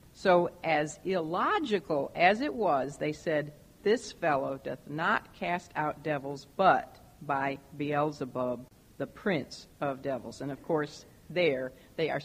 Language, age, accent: English, 50-69, American